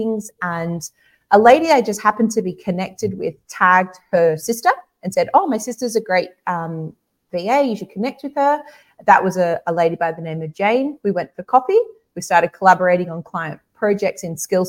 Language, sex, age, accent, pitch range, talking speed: English, female, 30-49, Australian, 165-205 Hz, 200 wpm